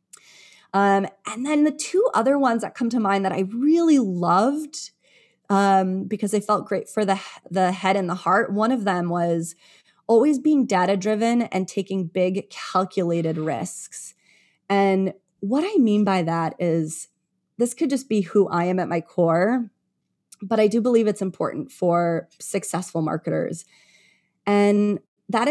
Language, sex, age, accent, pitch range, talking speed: English, female, 30-49, American, 185-225 Hz, 160 wpm